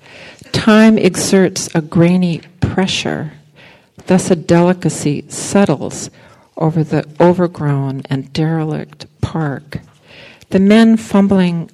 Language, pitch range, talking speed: English, 145-185 Hz, 90 wpm